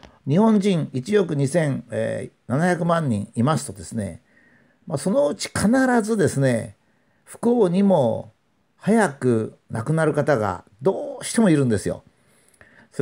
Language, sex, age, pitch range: Japanese, male, 50-69, 125-200 Hz